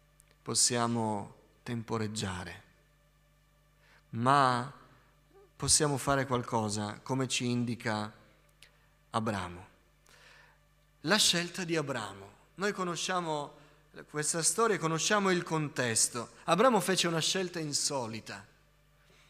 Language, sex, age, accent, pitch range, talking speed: Italian, male, 30-49, native, 130-180 Hz, 80 wpm